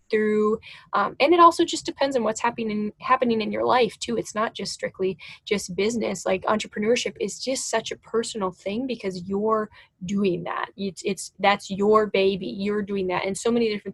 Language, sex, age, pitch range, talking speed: English, female, 10-29, 195-235 Hz, 195 wpm